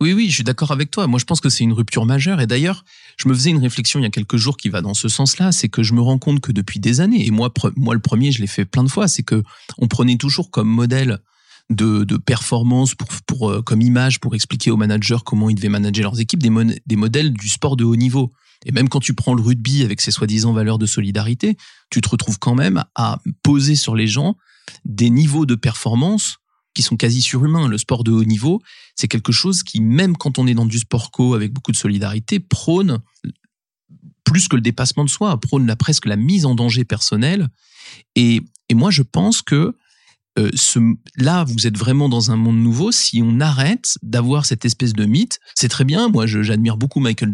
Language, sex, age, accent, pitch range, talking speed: French, male, 40-59, French, 115-145 Hz, 235 wpm